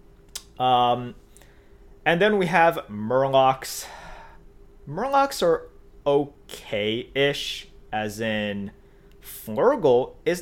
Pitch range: 110-155 Hz